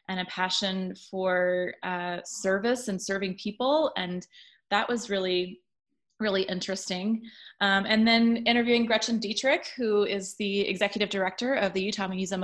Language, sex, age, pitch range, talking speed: English, female, 20-39, 190-230 Hz, 145 wpm